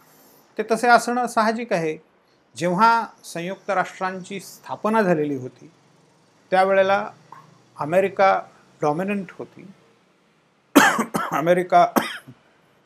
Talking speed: 75 wpm